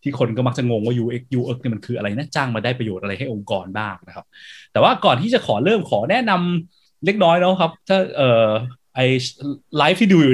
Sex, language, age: male, Thai, 20-39